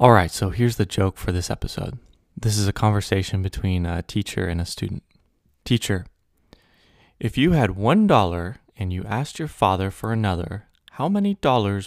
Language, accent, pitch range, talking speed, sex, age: English, American, 90-110 Hz, 175 wpm, male, 20-39